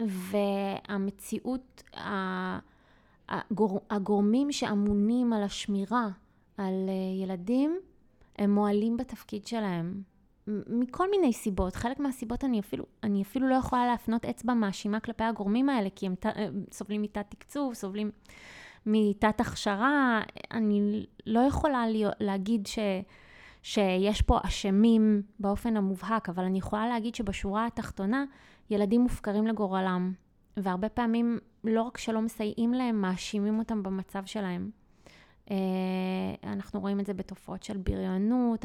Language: Hebrew